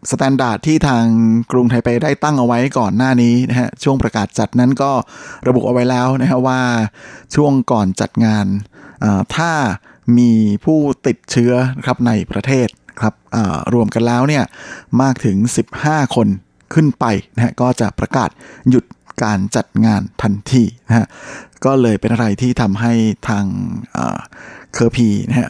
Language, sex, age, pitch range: Thai, male, 20-39, 110-130 Hz